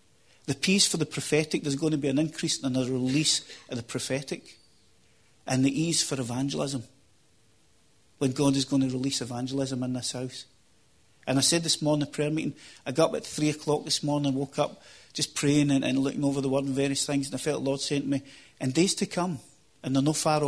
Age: 40-59